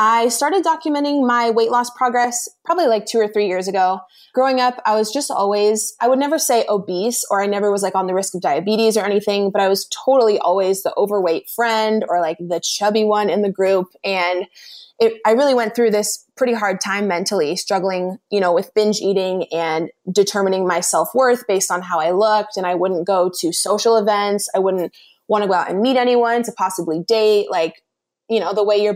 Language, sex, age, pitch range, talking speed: English, female, 20-39, 185-225 Hz, 215 wpm